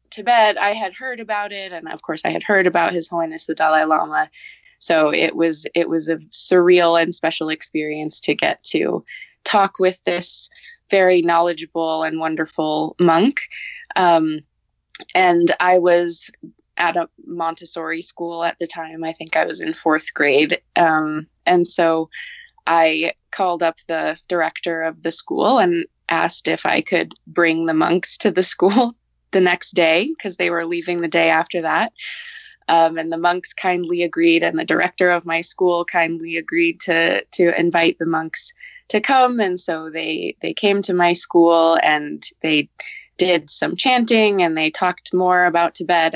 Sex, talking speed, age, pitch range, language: female, 170 wpm, 20-39, 165-185 Hz, English